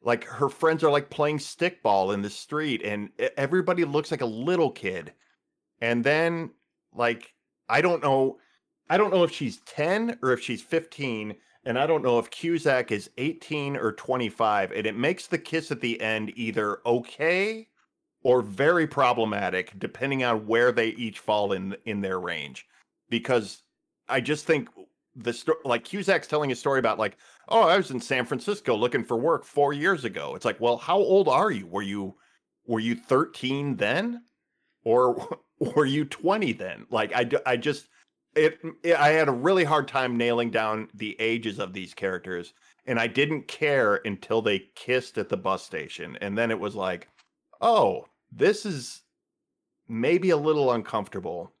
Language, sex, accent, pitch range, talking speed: English, male, American, 115-155 Hz, 175 wpm